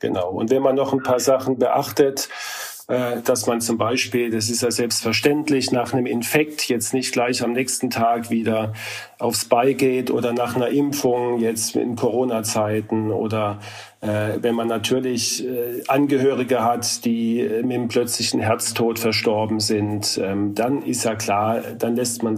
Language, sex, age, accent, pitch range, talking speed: German, male, 40-59, German, 110-130 Hz, 150 wpm